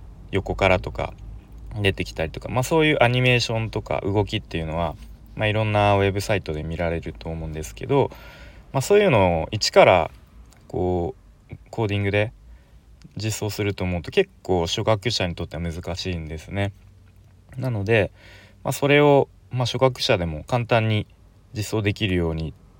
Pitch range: 90-120 Hz